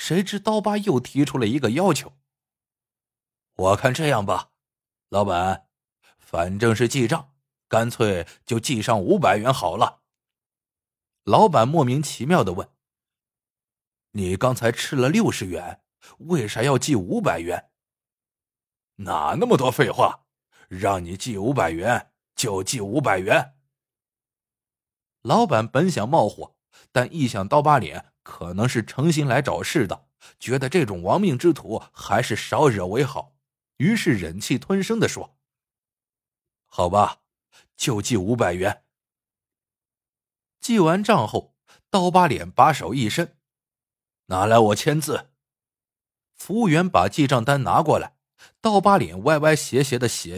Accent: native